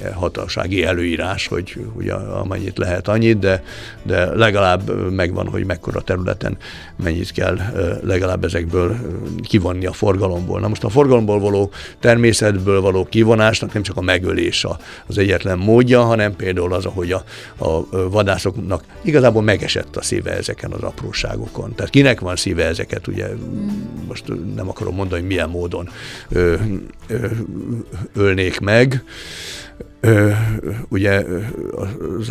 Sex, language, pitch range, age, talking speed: male, Hungarian, 95-110 Hz, 60-79, 125 wpm